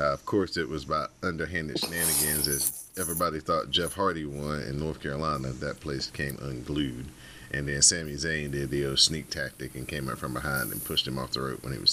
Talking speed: 220 wpm